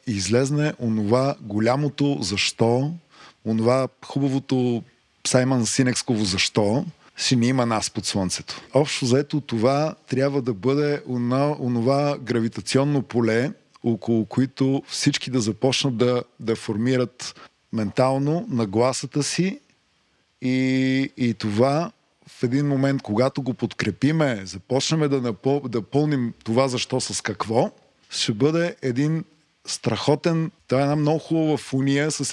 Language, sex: Bulgarian, male